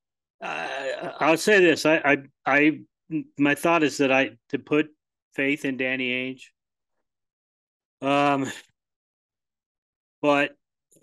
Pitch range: 120-140 Hz